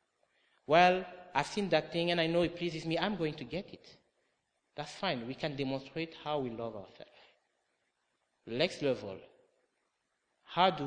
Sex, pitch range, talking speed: male, 120-170 Hz, 160 wpm